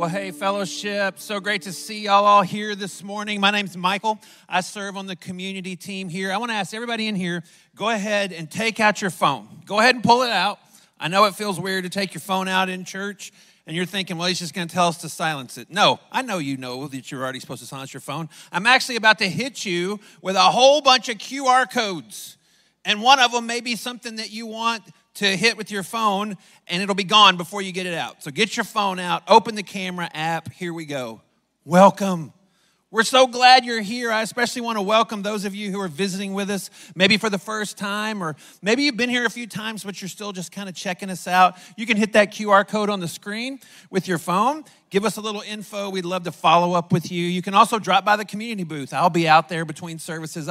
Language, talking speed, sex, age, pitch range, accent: English, 245 wpm, male, 40-59, 175-215 Hz, American